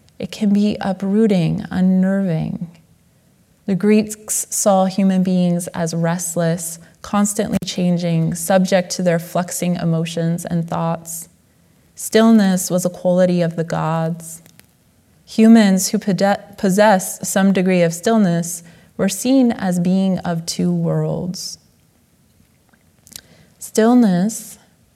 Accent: American